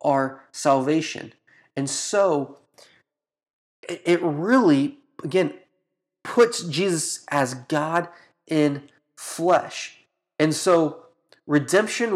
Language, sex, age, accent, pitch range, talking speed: English, male, 30-49, American, 135-165 Hz, 80 wpm